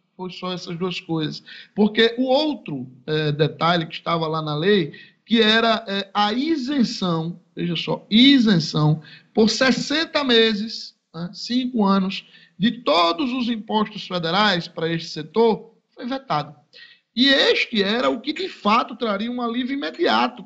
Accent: Brazilian